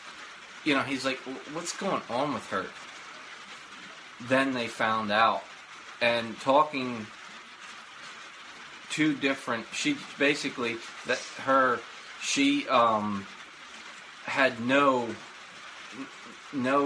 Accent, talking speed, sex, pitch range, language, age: American, 95 wpm, male, 110-130 Hz, English, 20-39